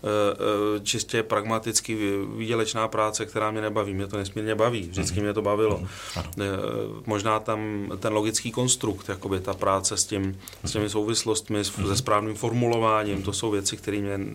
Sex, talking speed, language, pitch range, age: male, 140 wpm, Czech, 100-115 Hz, 30-49